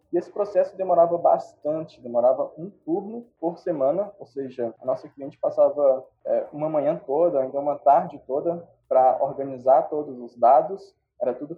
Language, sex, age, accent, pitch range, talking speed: Portuguese, male, 20-39, Brazilian, 150-215 Hz, 160 wpm